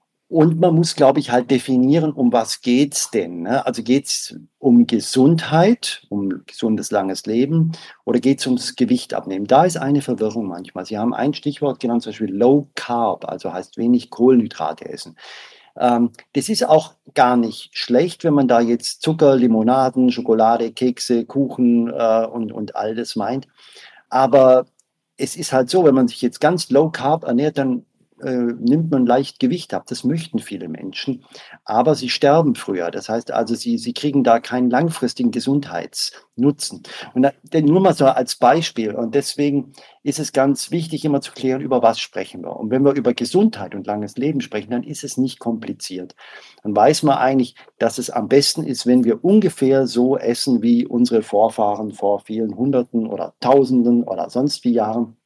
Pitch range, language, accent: 120-145 Hz, German, German